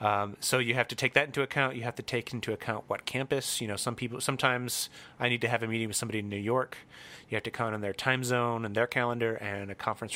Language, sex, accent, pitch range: English, male, American, 105-125 Hz